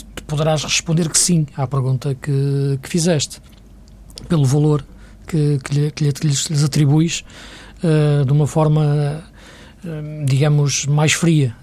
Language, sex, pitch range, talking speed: Portuguese, male, 140-165 Hz, 120 wpm